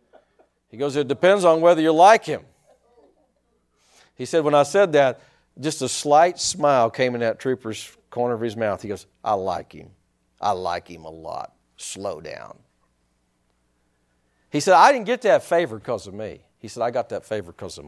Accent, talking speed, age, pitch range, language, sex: American, 190 wpm, 50-69, 125-190 Hz, English, male